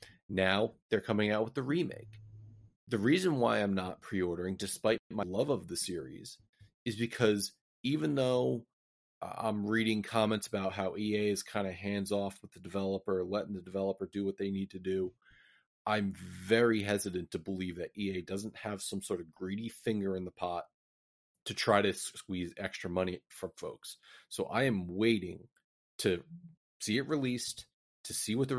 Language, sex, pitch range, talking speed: English, male, 95-115 Hz, 175 wpm